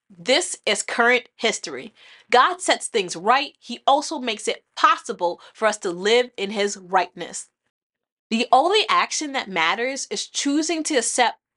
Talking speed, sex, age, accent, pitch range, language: 150 wpm, female, 30-49, American, 205-295 Hz, English